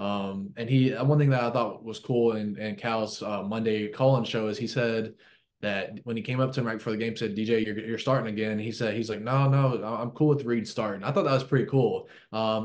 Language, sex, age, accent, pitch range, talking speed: English, male, 20-39, American, 110-130 Hz, 270 wpm